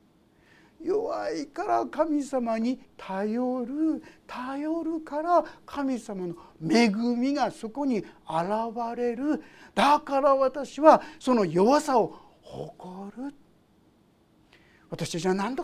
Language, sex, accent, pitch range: Japanese, male, native, 190-315 Hz